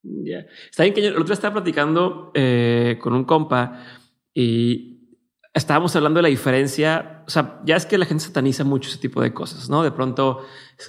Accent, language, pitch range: Mexican, Spanish, 130-170 Hz